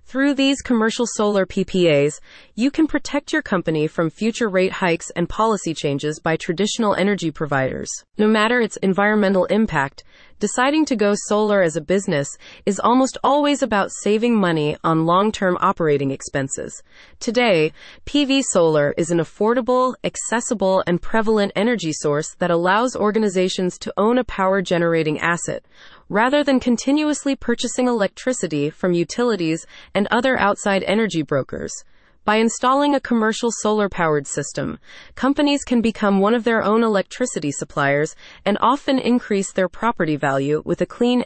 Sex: female